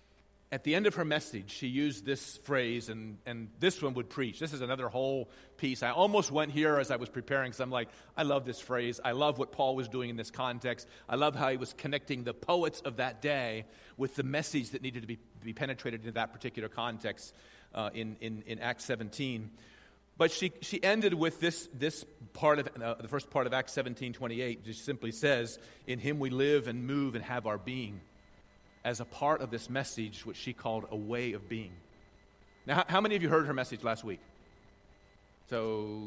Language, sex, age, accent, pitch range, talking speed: English, male, 40-59, American, 110-140 Hz, 215 wpm